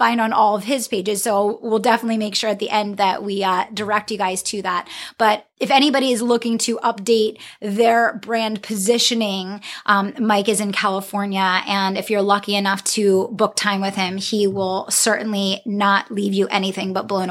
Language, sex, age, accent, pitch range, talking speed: English, female, 20-39, American, 205-240 Hz, 195 wpm